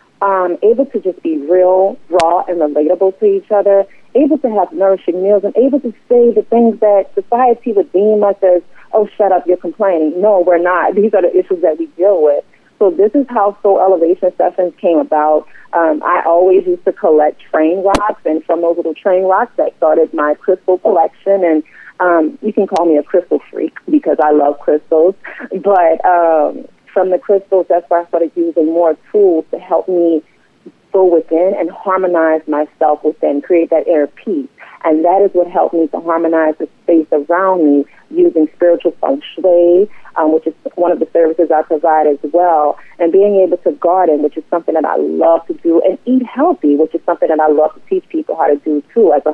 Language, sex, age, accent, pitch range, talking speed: English, female, 40-59, American, 160-200 Hz, 205 wpm